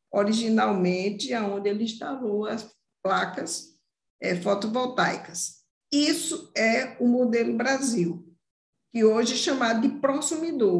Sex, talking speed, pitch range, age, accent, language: female, 100 wpm, 215-275 Hz, 50-69, Brazilian, Portuguese